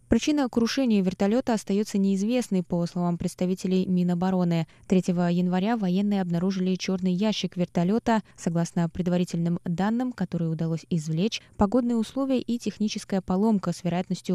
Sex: female